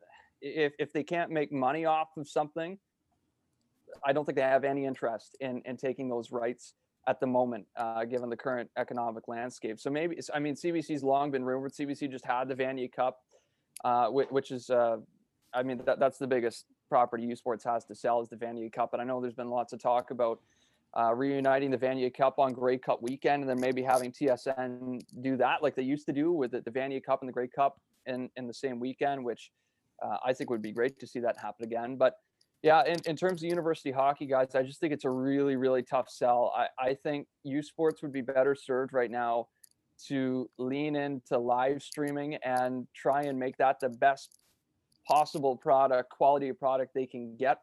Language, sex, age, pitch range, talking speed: English, male, 20-39, 125-145 Hz, 215 wpm